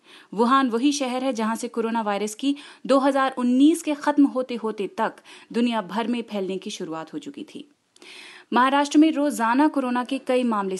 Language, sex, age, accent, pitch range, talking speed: Hindi, female, 30-49, native, 225-285 Hz, 170 wpm